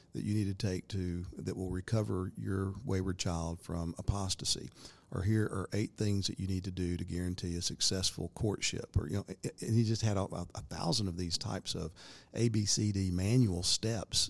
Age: 50-69